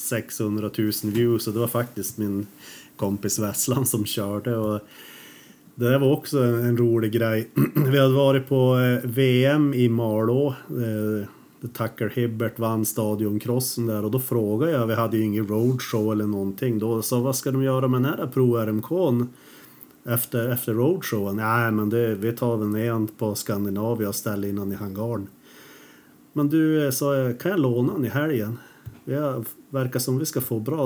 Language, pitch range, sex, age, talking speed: Swedish, 110-125 Hz, male, 30-49, 175 wpm